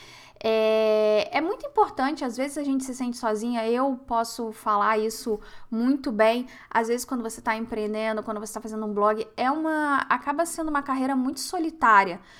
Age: 10-29